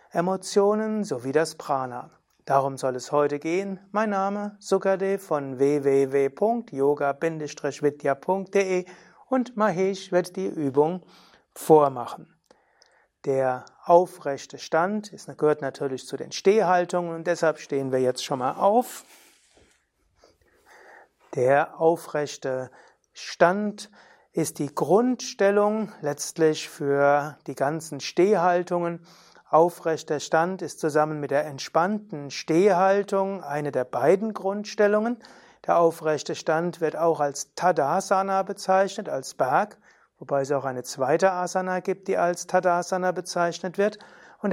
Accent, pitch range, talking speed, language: German, 145-195 Hz, 110 wpm, German